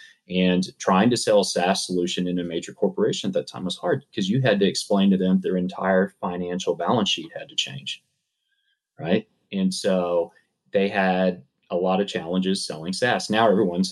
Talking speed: 190 wpm